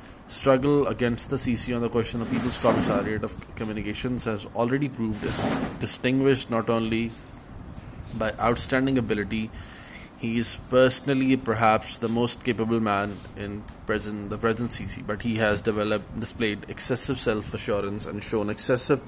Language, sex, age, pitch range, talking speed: Urdu, male, 20-39, 105-120 Hz, 140 wpm